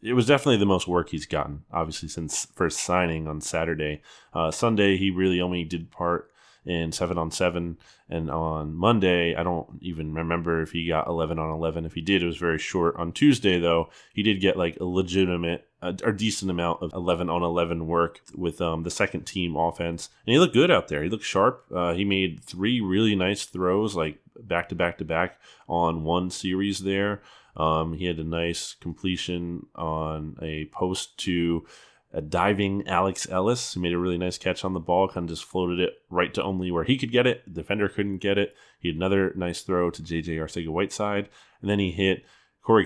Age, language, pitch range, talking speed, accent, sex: 20-39, English, 85-95 Hz, 205 wpm, American, male